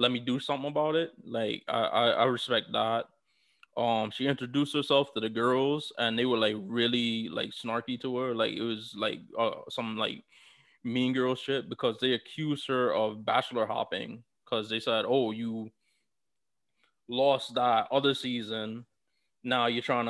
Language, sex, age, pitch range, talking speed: English, male, 20-39, 110-130 Hz, 170 wpm